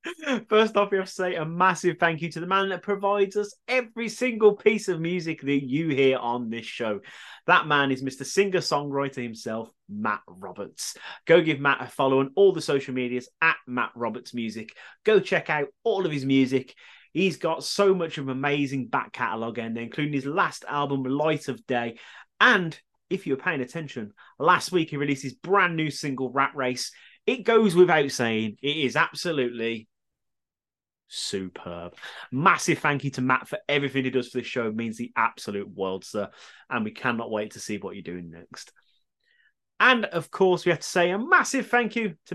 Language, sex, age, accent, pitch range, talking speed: English, male, 30-49, British, 130-190 Hz, 195 wpm